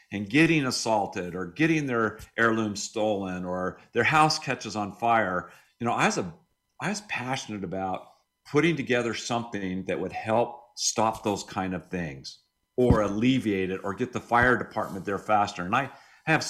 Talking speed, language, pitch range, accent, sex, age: 165 wpm, English, 105-125 Hz, American, male, 50-69